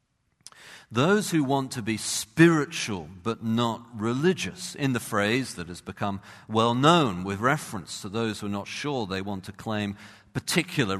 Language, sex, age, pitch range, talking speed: English, male, 50-69, 100-160 Hz, 165 wpm